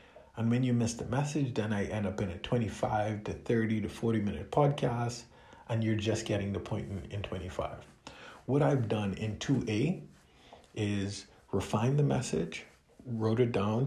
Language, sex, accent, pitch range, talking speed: English, male, American, 100-125 Hz, 170 wpm